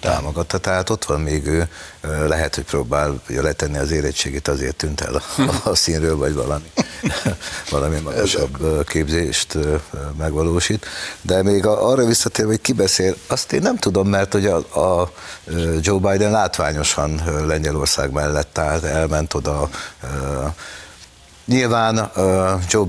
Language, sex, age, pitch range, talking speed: Hungarian, male, 60-79, 75-90 Hz, 125 wpm